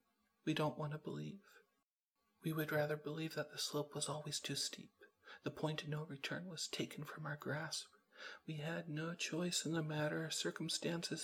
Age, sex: 40-59, male